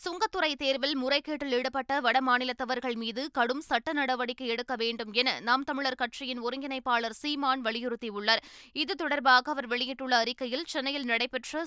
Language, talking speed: Tamil, 130 wpm